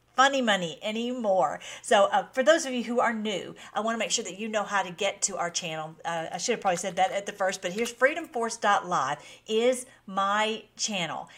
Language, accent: English, American